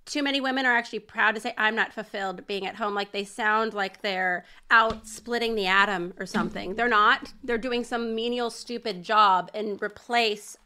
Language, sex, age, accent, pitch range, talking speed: English, female, 30-49, American, 220-295 Hz, 195 wpm